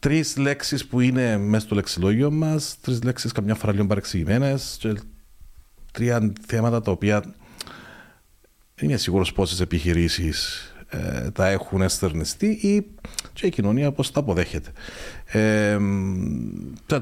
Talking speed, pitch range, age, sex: 125 wpm, 95-140 Hz, 40-59, male